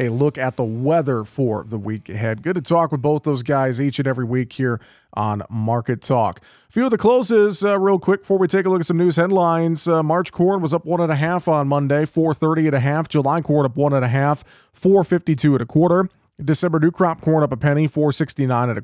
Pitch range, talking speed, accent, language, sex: 135-165 Hz, 225 wpm, American, English, male